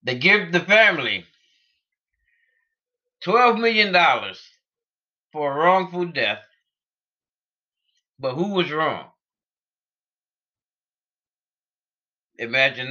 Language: English